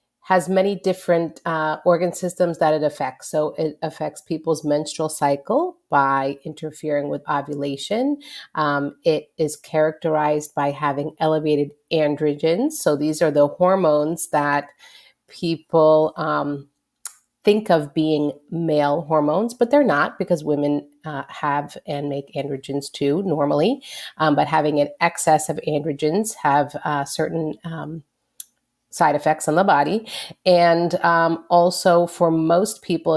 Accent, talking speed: American, 130 wpm